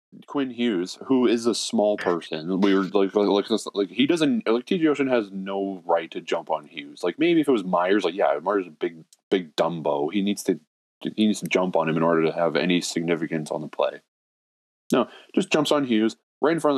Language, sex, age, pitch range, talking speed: English, male, 20-39, 90-125 Hz, 235 wpm